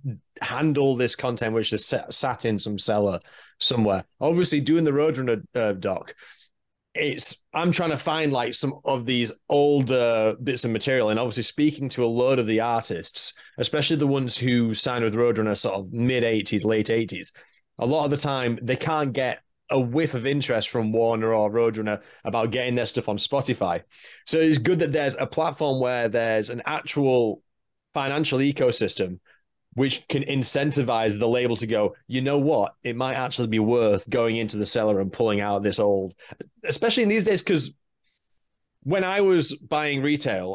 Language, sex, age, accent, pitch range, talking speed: English, male, 30-49, British, 110-140 Hz, 175 wpm